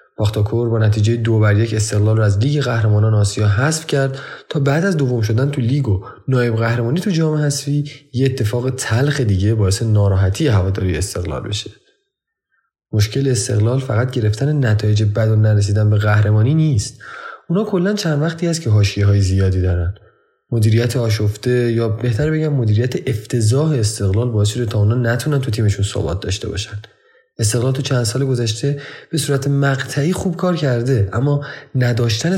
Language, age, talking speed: Persian, 30-49, 160 wpm